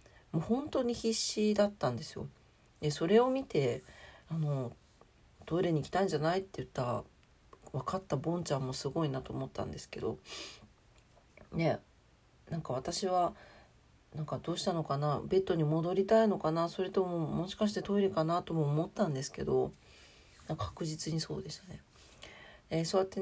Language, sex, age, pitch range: Japanese, female, 40-59, 145-190 Hz